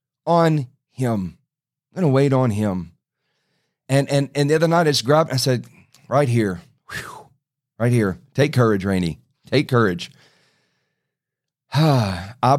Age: 40-59